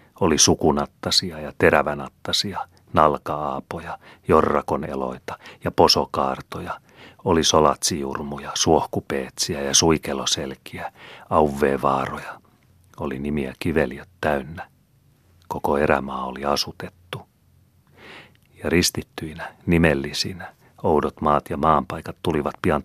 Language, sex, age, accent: Finnish, male, 40-59, native